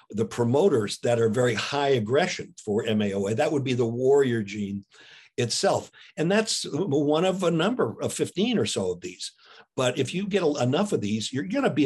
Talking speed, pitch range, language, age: 195 wpm, 115-155 Hz, English, 60-79